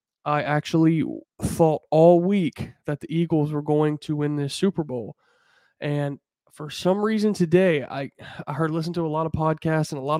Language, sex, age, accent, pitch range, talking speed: English, male, 20-39, American, 145-165 Hz, 190 wpm